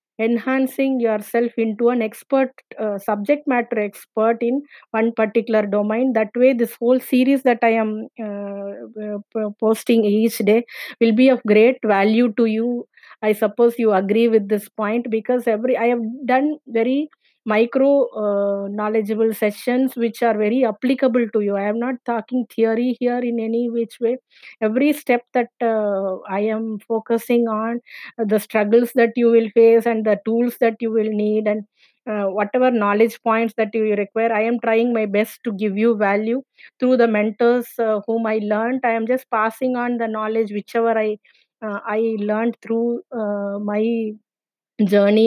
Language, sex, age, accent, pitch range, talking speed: English, female, 20-39, Indian, 210-235 Hz, 165 wpm